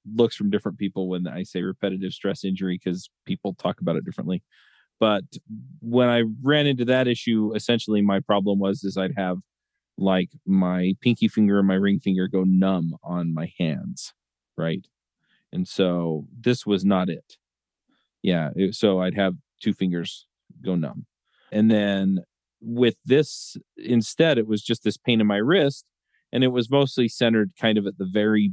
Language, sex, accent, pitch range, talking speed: English, male, American, 95-115 Hz, 170 wpm